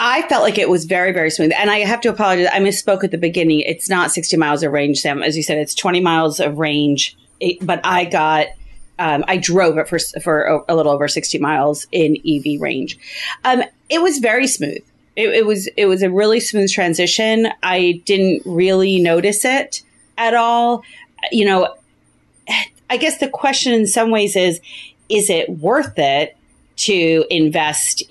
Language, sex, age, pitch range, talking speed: English, female, 30-49, 160-205 Hz, 185 wpm